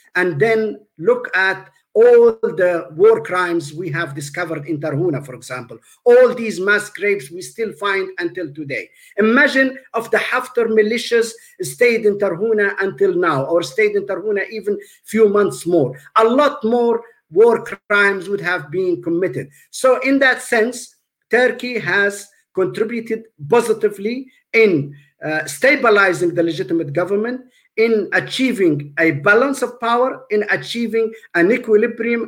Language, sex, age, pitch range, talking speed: Turkish, male, 50-69, 180-250 Hz, 140 wpm